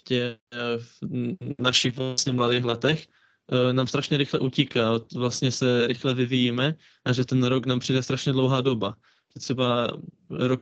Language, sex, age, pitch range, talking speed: Czech, male, 20-39, 120-130 Hz, 130 wpm